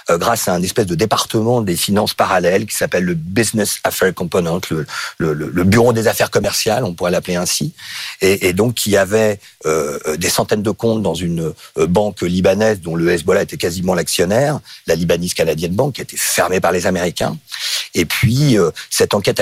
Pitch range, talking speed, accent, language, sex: 90-115 Hz, 200 wpm, French, French, male